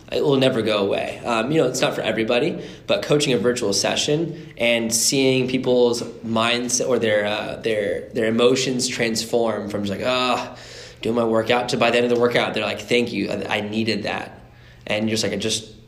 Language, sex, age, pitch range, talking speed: English, male, 10-29, 105-120 Hz, 210 wpm